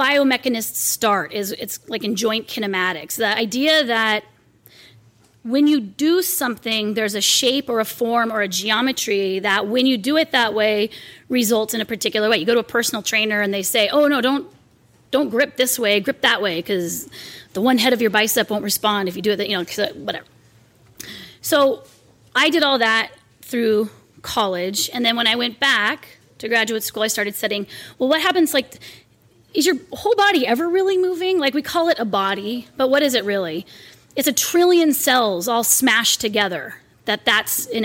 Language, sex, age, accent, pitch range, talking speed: English, female, 30-49, American, 205-270 Hz, 195 wpm